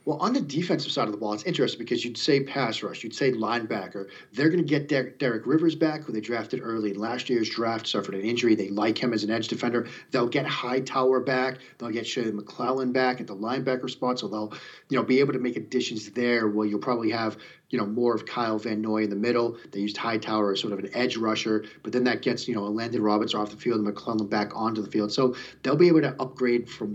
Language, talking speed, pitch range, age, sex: English, 255 wpm, 110-130 Hz, 40-59, male